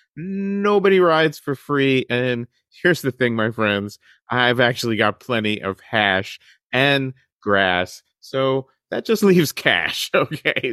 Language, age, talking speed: English, 30-49, 135 wpm